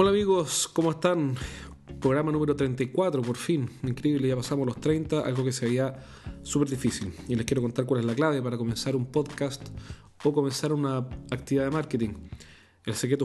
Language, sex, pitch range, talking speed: Spanish, male, 115-145 Hz, 180 wpm